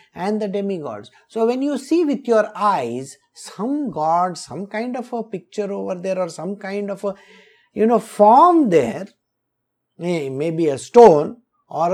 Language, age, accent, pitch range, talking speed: English, 50-69, Indian, 185-265 Hz, 160 wpm